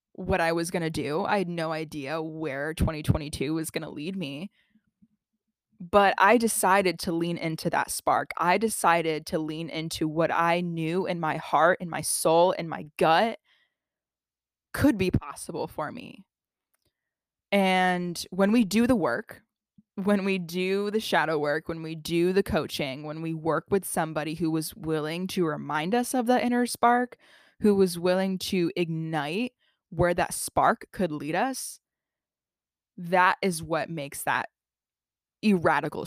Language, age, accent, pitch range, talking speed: English, 20-39, American, 160-200 Hz, 160 wpm